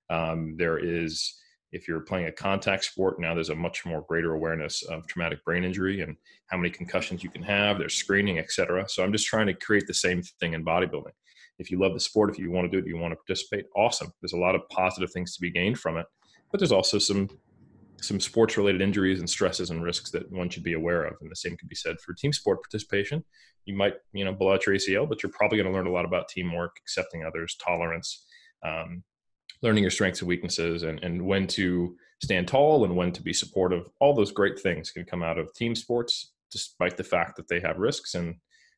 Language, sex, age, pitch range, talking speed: English, male, 30-49, 85-100 Hz, 235 wpm